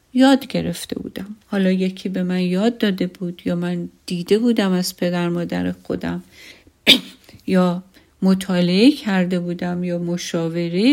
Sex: female